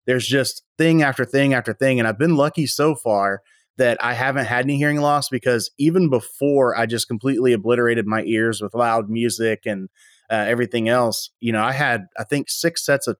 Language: English